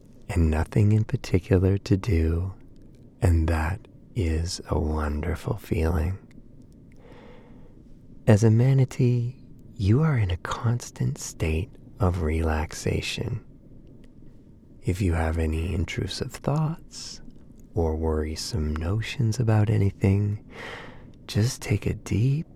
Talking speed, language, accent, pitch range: 100 wpm, English, American, 90-120 Hz